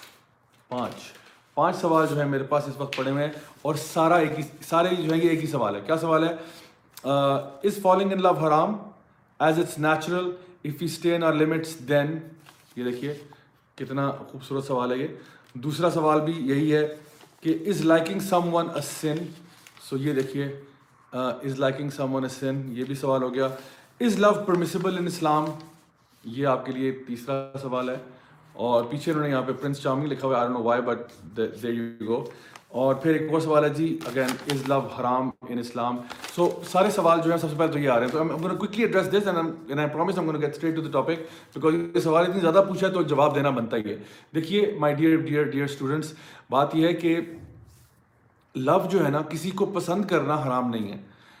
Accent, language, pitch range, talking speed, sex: Indian, English, 135-165 Hz, 150 wpm, male